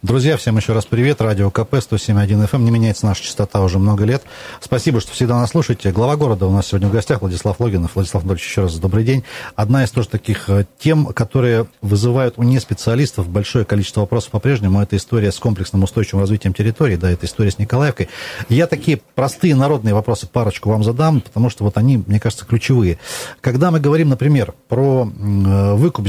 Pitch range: 100-125 Hz